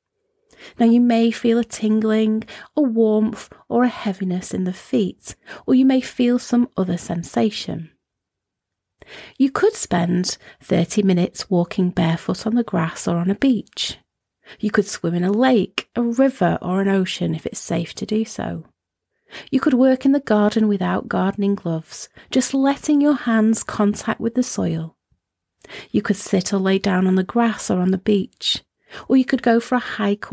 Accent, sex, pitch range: British, female, 185-240 Hz